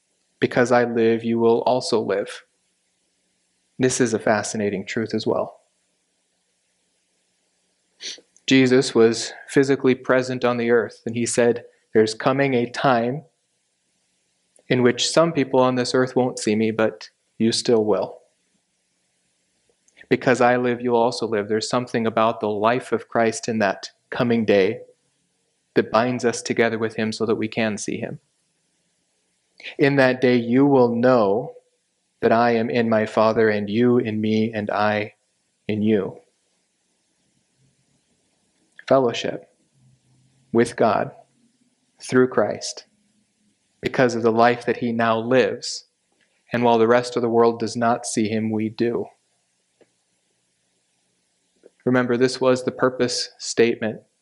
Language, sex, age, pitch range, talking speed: English, male, 30-49, 110-125 Hz, 135 wpm